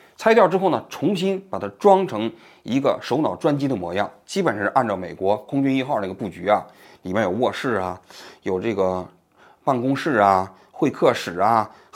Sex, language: male, Chinese